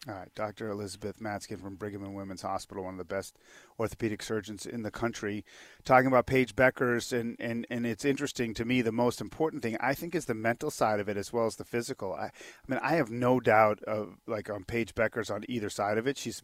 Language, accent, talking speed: English, American, 235 wpm